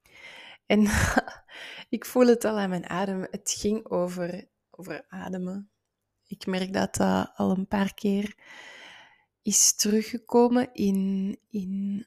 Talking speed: 125 wpm